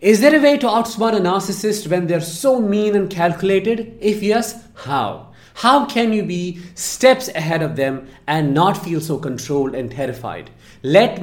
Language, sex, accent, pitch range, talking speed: English, male, Indian, 135-200 Hz, 175 wpm